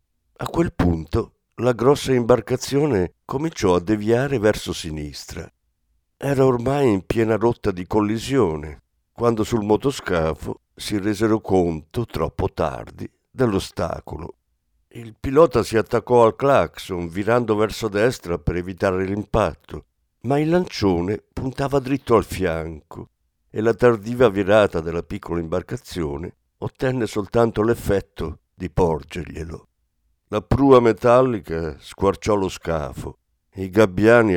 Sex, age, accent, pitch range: male, 50-69, native, 85-115 Hz